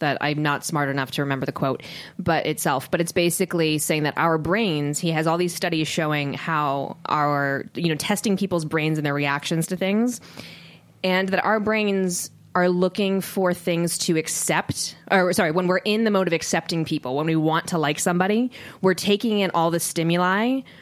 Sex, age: female, 20-39